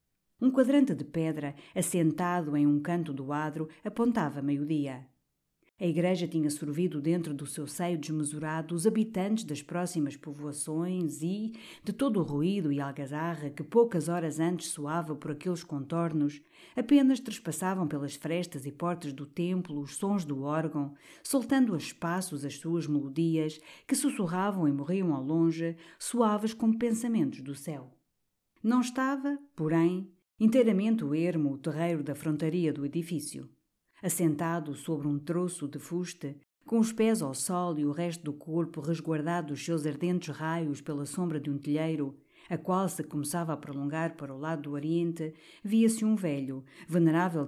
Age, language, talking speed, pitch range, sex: 50-69, Portuguese, 155 wpm, 145-180 Hz, female